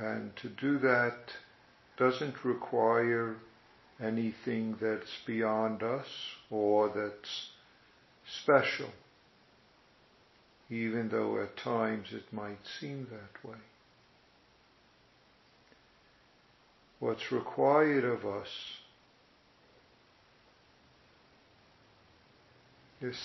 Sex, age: male, 60-79